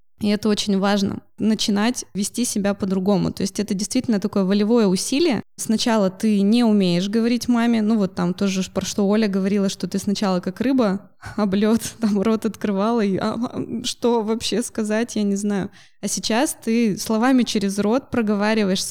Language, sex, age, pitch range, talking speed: Russian, female, 20-39, 195-225 Hz, 170 wpm